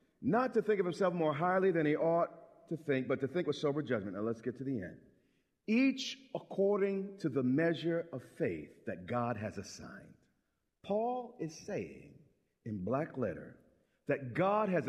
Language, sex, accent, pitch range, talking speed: English, male, American, 150-215 Hz, 175 wpm